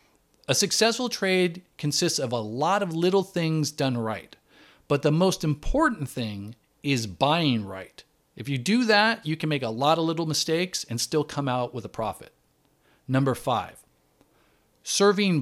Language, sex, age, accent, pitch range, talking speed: English, male, 40-59, American, 120-175 Hz, 165 wpm